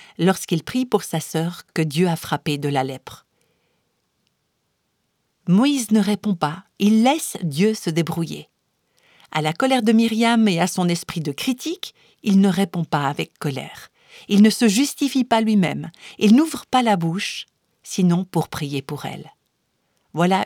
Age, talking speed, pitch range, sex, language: 50-69, 160 wpm, 160-210 Hz, female, French